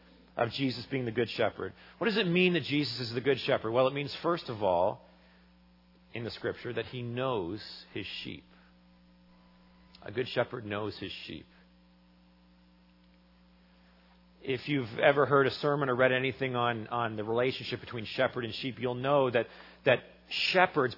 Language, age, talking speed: English, 40-59, 165 wpm